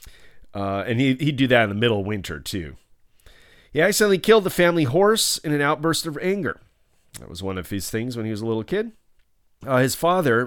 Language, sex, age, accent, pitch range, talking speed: English, male, 40-59, American, 100-150 Hz, 225 wpm